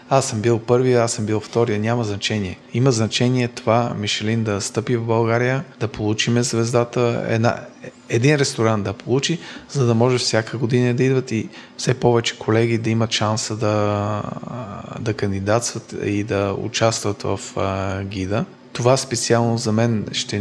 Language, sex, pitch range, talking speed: Bulgarian, male, 105-125 Hz, 160 wpm